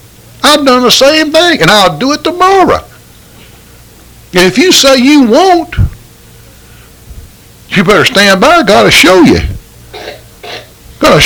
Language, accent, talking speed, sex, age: English, American, 130 wpm, male, 50-69